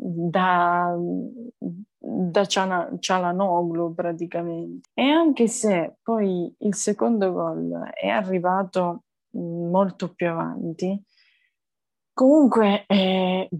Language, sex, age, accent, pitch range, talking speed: Italian, female, 20-39, native, 170-200 Hz, 75 wpm